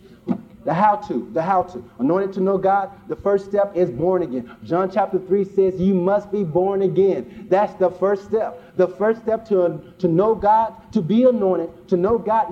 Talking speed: 200 wpm